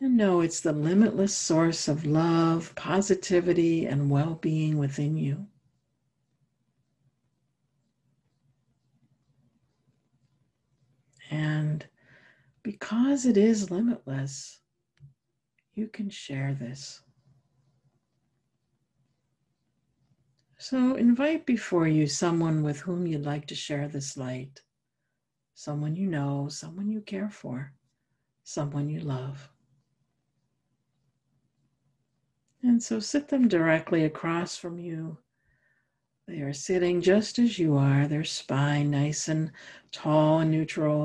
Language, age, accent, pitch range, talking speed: English, 60-79, American, 135-160 Hz, 100 wpm